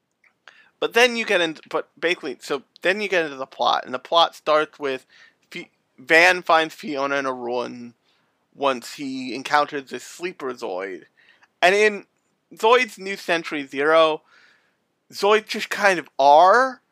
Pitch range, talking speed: 140-190 Hz, 155 wpm